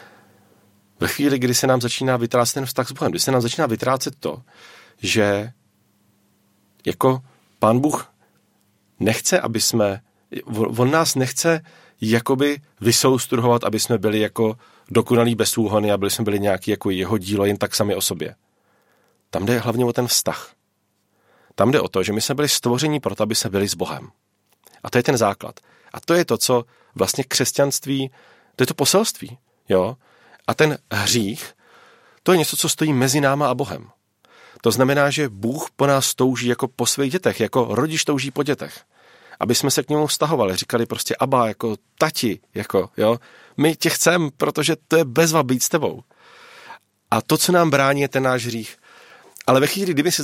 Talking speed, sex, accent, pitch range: 180 wpm, male, native, 115-150 Hz